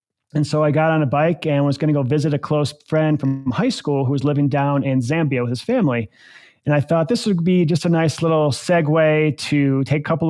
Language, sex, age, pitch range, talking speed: English, male, 30-49, 135-155 Hz, 250 wpm